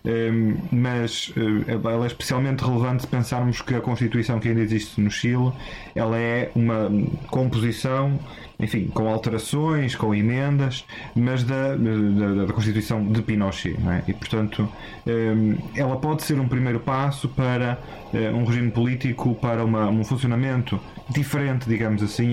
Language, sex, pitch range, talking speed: Portuguese, male, 105-125 Hz, 135 wpm